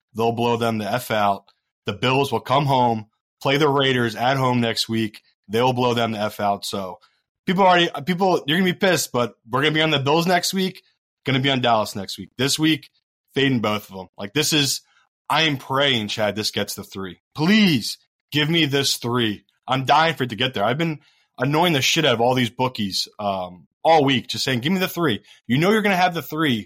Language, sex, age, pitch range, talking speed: English, male, 20-39, 110-145 Hz, 240 wpm